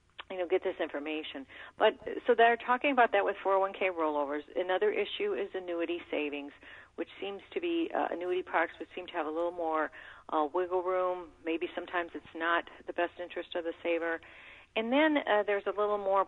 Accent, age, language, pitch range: American, 40-59, English, 160-200 Hz